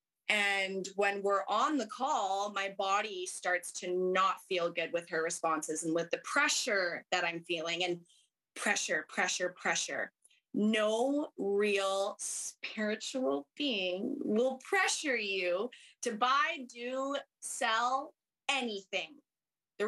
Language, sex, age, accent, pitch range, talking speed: English, female, 20-39, American, 190-260 Hz, 120 wpm